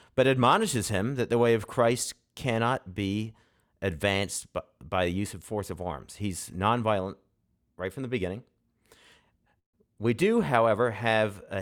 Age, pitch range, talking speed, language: 40-59, 95-115 Hz, 155 wpm, English